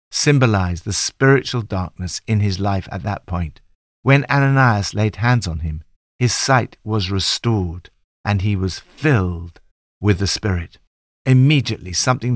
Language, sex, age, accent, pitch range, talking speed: English, male, 60-79, British, 90-130 Hz, 140 wpm